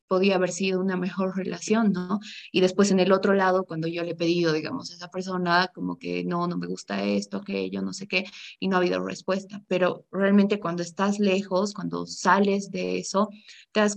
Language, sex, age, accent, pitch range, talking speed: Spanish, female, 20-39, Mexican, 170-195 Hz, 215 wpm